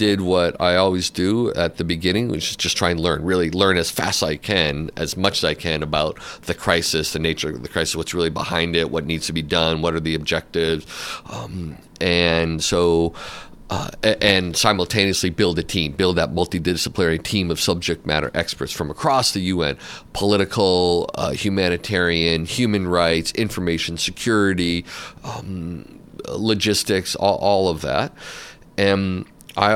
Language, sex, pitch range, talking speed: English, male, 80-100 Hz, 165 wpm